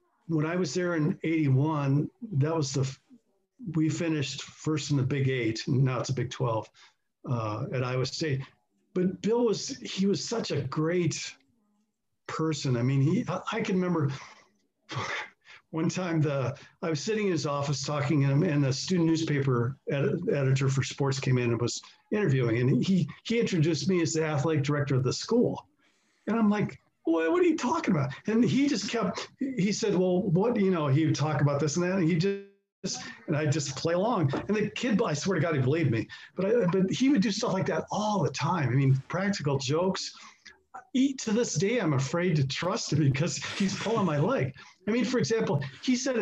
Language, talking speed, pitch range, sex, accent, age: English, 205 wpm, 140-200 Hz, male, American, 50-69